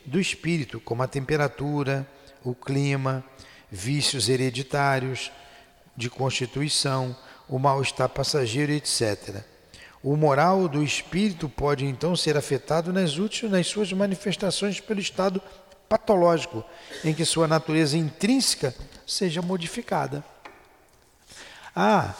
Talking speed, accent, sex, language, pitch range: 100 wpm, Brazilian, male, Portuguese, 130-190 Hz